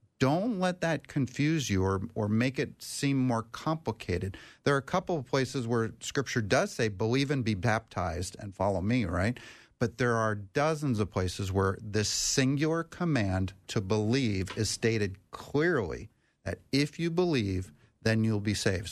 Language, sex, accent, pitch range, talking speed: English, male, American, 105-130 Hz, 170 wpm